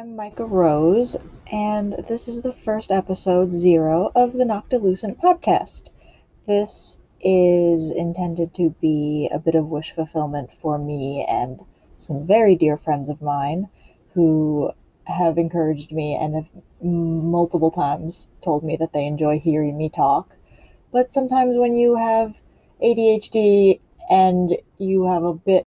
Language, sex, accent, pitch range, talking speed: English, female, American, 155-200 Hz, 140 wpm